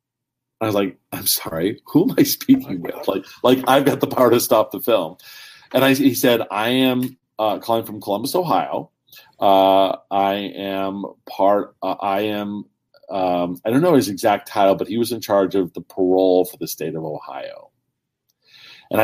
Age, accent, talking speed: 40-59, American, 185 wpm